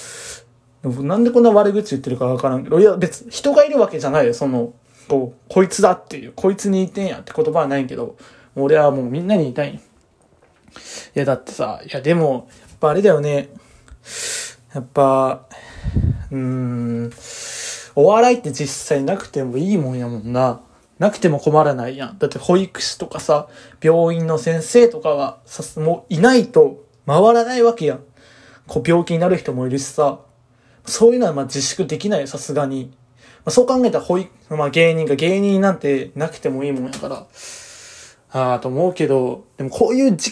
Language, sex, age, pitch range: Japanese, male, 20-39, 135-200 Hz